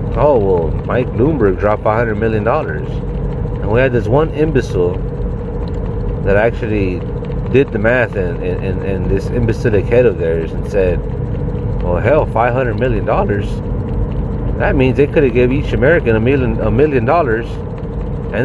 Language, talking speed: English, 165 wpm